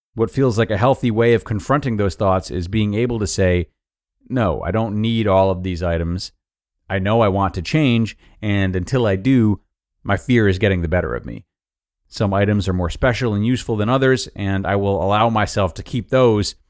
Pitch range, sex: 90-120 Hz, male